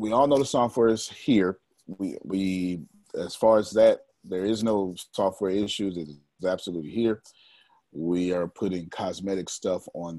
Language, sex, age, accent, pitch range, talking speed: English, male, 30-49, American, 90-115 Hz, 165 wpm